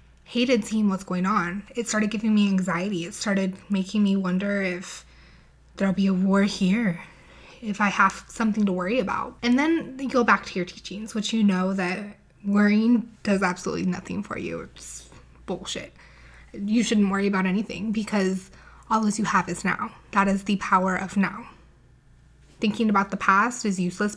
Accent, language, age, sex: American, English, 20-39, female